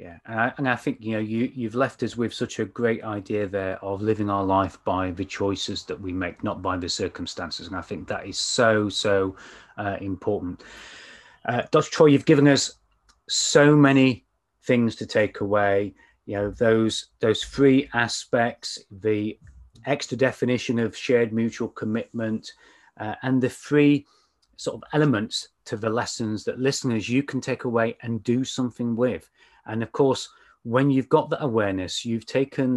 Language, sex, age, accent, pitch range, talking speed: English, male, 30-49, British, 105-125 Hz, 175 wpm